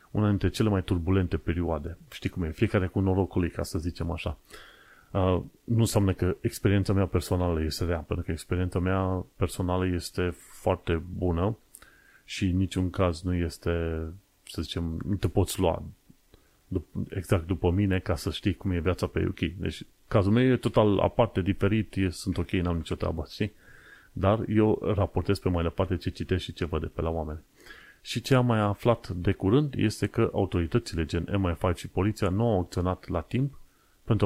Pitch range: 90-105 Hz